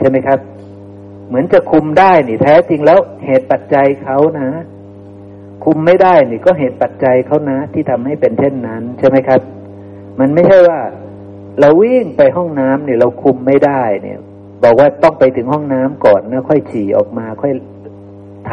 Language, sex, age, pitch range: Thai, male, 60-79, 100-155 Hz